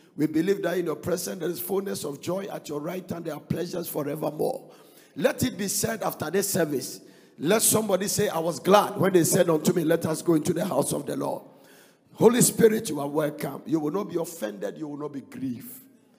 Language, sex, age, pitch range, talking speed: English, male, 50-69, 145-180 Hz, 225 wpm